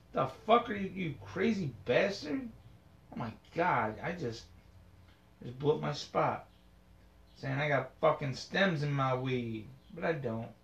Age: 30-49